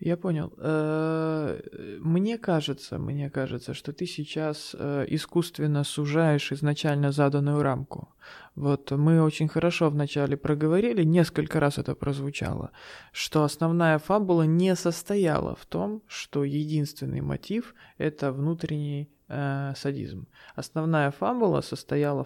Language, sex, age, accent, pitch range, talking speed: Russian, male, 20-39, native, 140-160 Hz, 110 wpm